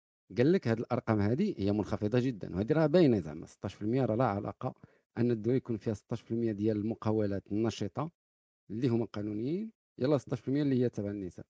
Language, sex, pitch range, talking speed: Arabic, male, 105-130 Hz, 165 wpm